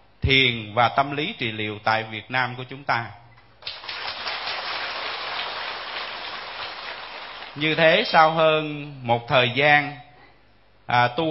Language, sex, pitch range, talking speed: Vietnamese, male, 120-145 Hz, 110 wpm